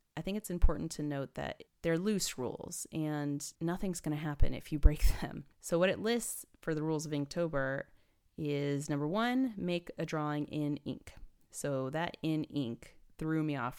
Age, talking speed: 30-49, 185 wpm